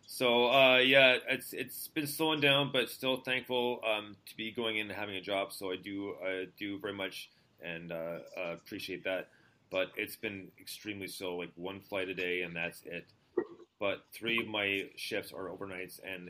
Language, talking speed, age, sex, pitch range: English, 190 wpm, 30-49, male, 90-110 Hz